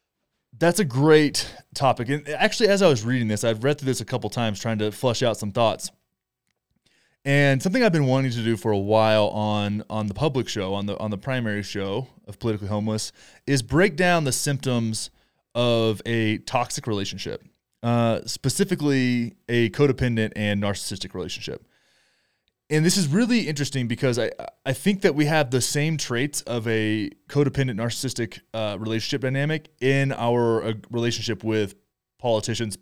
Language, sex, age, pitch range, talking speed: English, male, 20-39, 110-145 Hz, 170 wpm